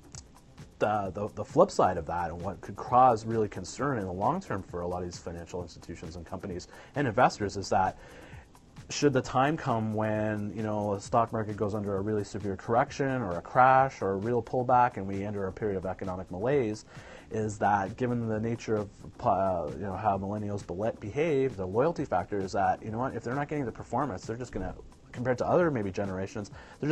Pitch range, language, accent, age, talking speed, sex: 95-120 Hz, English, American, 30-49, 215 wpm, male